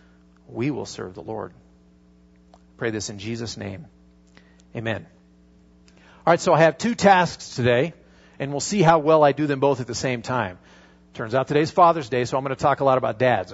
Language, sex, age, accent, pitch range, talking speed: English, male, 40-59, American, 100-150 Hz, 210 wpm